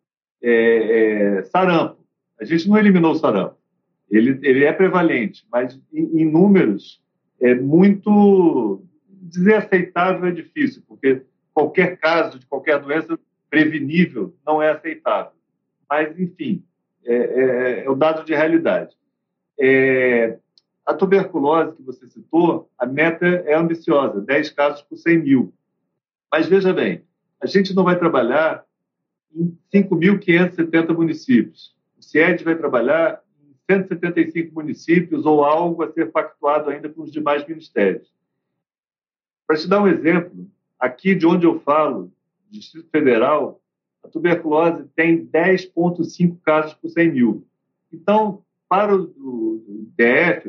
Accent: Brazilian